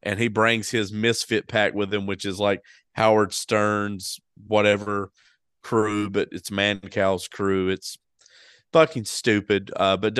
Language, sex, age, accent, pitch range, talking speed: English, male, 30-49, American, 100-120 Hz, 145 wpm